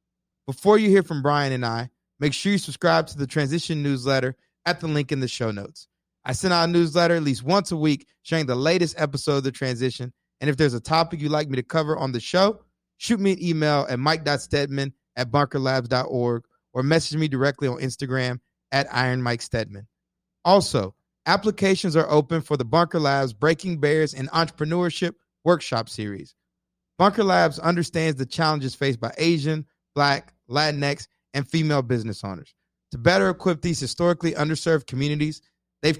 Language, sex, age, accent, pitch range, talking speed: English, male, 30-49, American, 130-165 Hz, 175 wpm